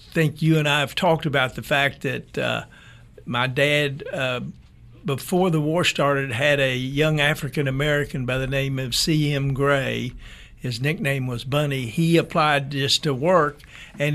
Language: English